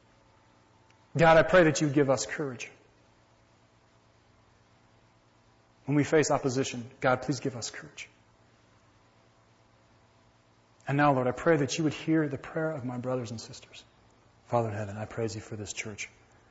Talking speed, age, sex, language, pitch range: 155 wpm, 40-59, male, English, 110-120 Hz